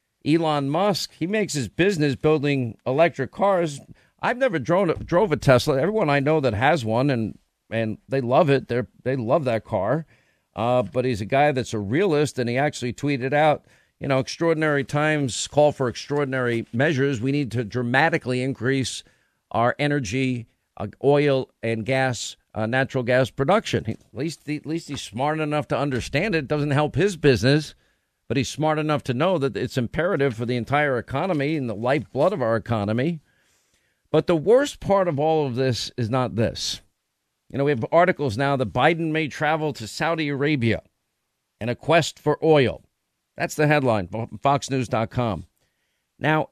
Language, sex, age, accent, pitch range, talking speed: English, male, 50-69, American, 120-150 Hz, 175 wpm